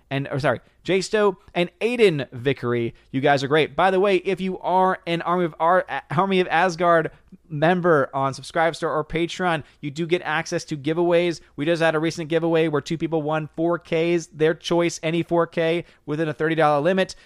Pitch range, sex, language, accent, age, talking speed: 130-165 Hz, male, English, American, 20-39, 190 wpm